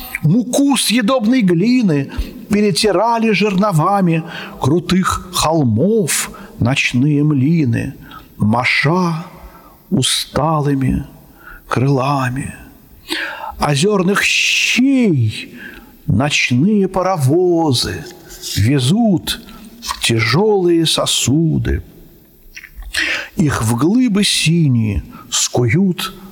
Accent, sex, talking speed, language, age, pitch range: native, male, 55 wpm, Russian, 50-69, 135-180 Hz